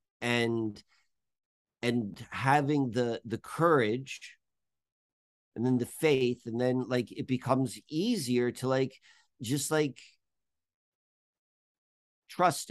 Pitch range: 115-140 Hz